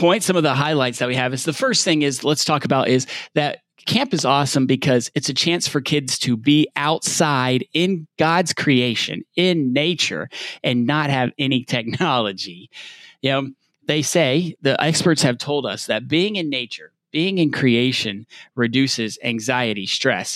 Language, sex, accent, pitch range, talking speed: English, male, American, 125-160 Hz, 175 wpm